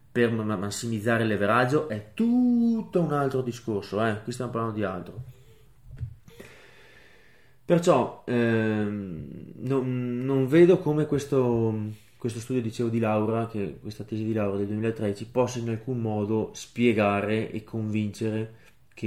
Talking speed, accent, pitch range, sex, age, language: 130 wpm, native, 105-125 Hz, male, 20-39, Italian